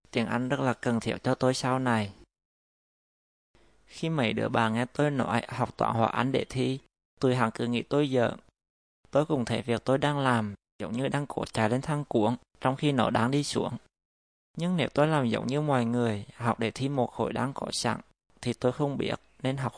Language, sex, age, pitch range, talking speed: Vietnamese, male, 20-39, 115-135 Hz, 220 wpm